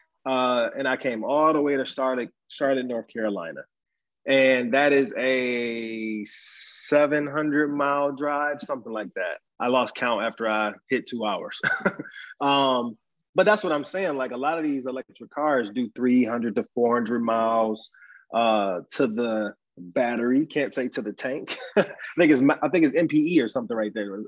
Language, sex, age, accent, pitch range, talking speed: English, male, 20-39, American, 120-155 Hz, 165 wpm